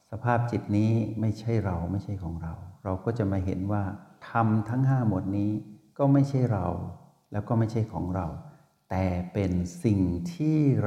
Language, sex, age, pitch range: Thai, male, 60-79, 95-130 Hz